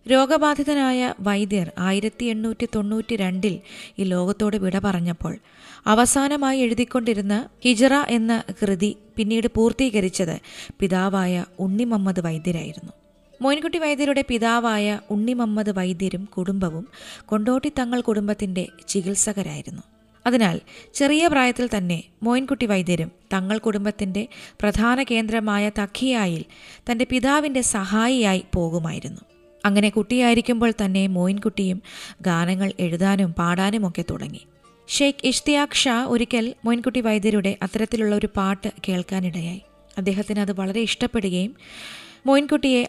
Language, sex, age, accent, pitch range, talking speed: Malayalam, female, 20-39, native, 190-235 Hz, 90 wpm